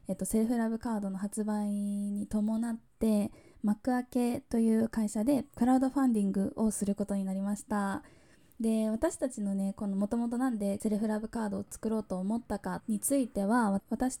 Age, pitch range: 20-39, 205-235 Hz